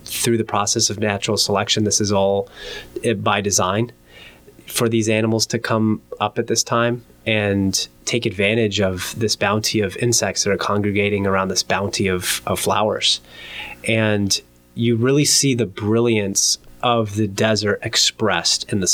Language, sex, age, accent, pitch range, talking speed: English, male, 30-49, American, 100-115 Hz, 155 wpm